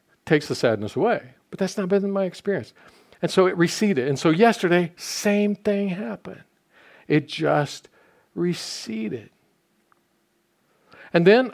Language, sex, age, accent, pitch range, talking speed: English, male, 50-69, American, 145-185 Hz, 130 wpm